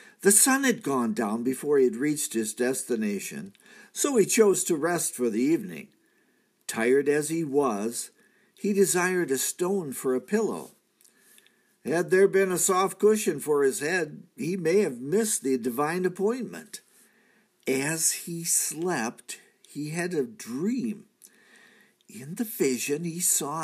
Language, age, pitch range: English, 50-69, 150-210 Hz